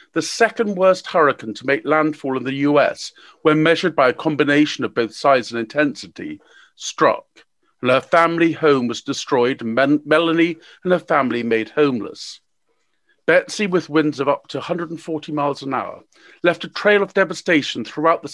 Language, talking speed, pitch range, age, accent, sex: English, 165 wpm, 140-165 Hz, 50-69, British, male